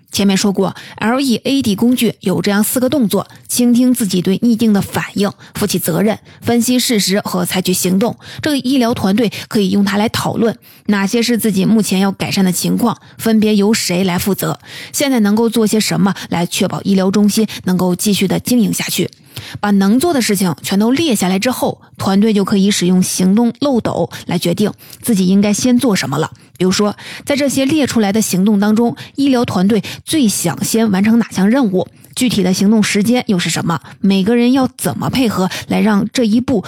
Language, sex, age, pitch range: Chinese, female, 20-39, 185-230 Hz